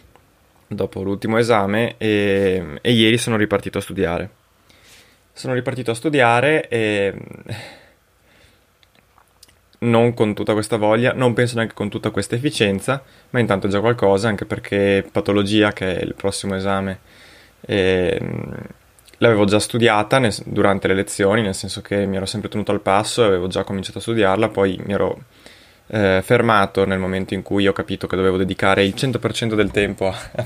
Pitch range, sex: 100-115 Hz, male